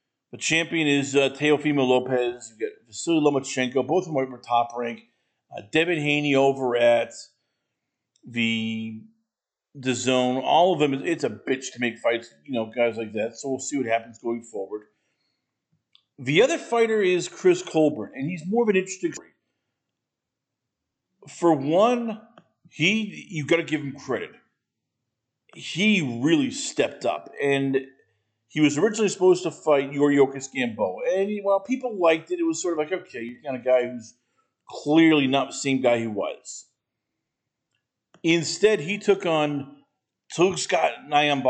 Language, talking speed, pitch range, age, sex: English, 160 wpm, 125-165 Hz, 40-59, male